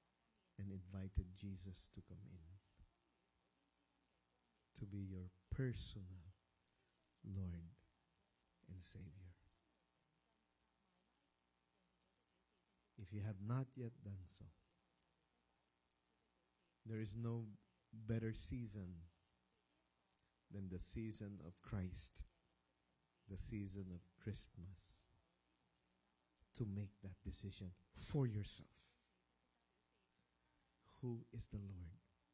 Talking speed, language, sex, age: 80 wpm, English, male, 50-69